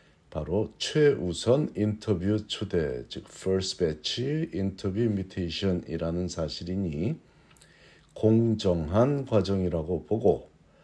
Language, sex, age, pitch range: Korean, male, 50-69, 80-110 Hz